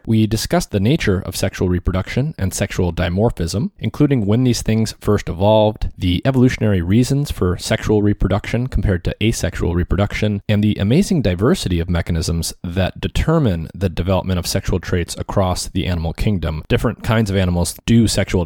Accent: American